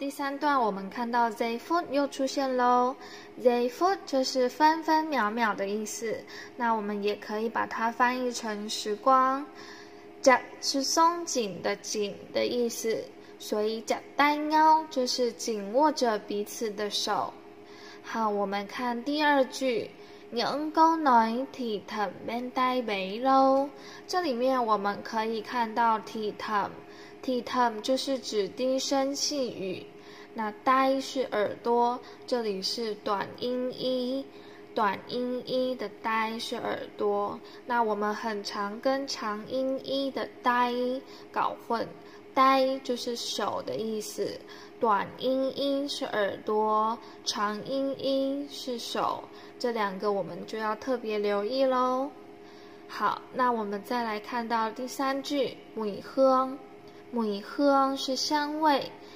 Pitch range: 220-270 Hz